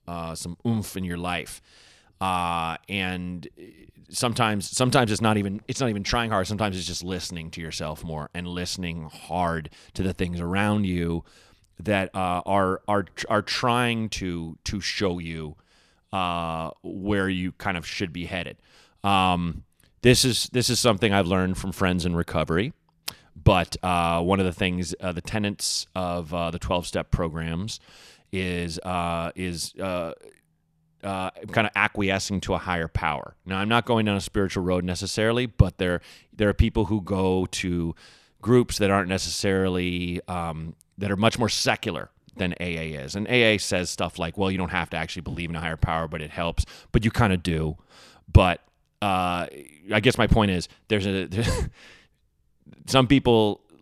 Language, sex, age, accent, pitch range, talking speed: English, male, 30-49, American, 85-105 Hz, 175 wpm